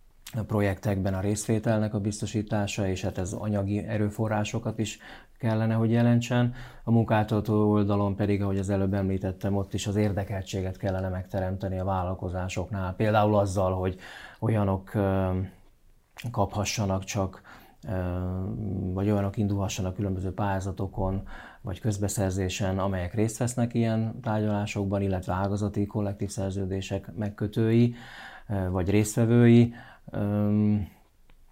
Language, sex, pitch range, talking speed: Hungarian, male, 95-110 Hz, 110 wpm